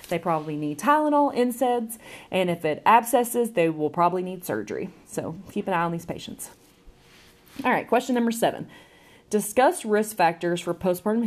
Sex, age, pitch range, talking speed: female, 30-49, 165-225 Hz, 165 wpm